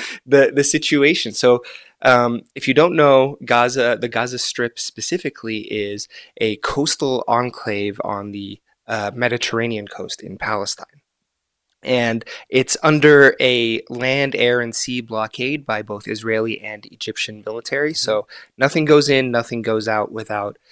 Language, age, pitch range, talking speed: English, 20-39, 110-130 Hz, 140 wpm